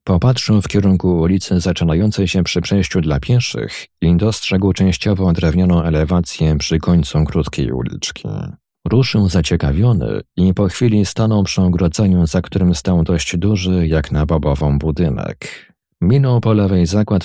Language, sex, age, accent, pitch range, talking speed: Polish, male, 40-59, native, 80-95 Hz, 140 wpm